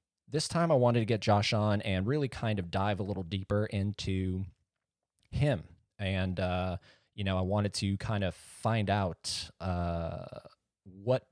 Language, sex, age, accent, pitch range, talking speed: English, male, 20-39, American, 90-115 Hz, 165 wpm